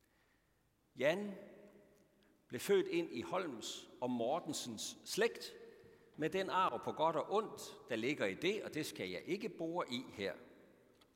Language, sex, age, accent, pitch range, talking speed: Danish, male, 60-79, native, 145-215 Hz, 150 wpm